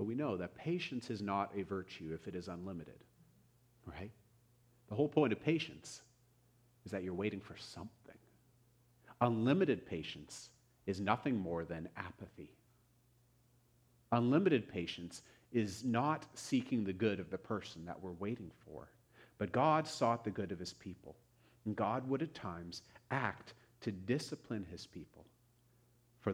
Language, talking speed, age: English, 150 wpm, 40-59